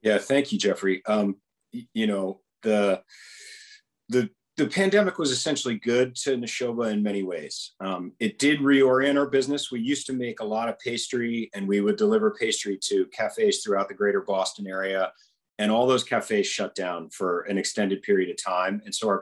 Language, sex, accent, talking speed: English, male, American, 190 wpm